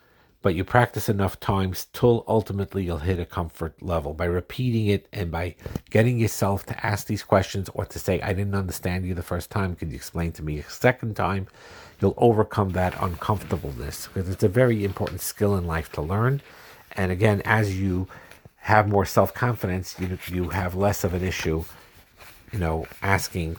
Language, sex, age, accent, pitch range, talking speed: English, male, 50-69, American, 85-105 Hz, 185 wpm